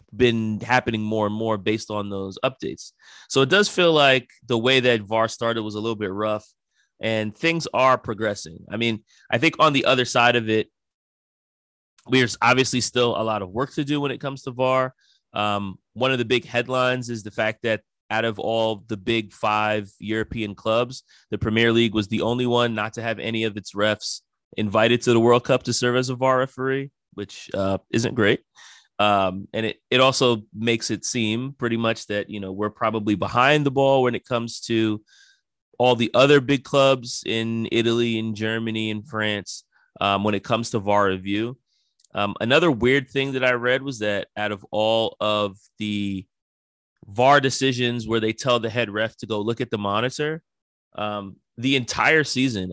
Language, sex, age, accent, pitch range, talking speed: English, male, 30-49, American, 105-125 Hz, 195 wpm